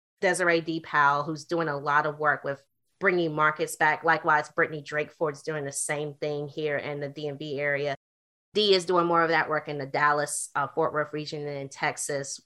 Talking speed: 195 wpm